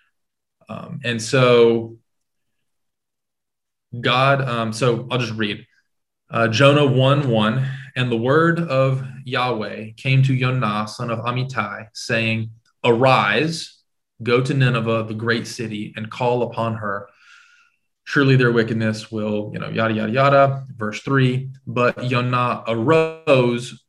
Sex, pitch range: male, 115-135 Hz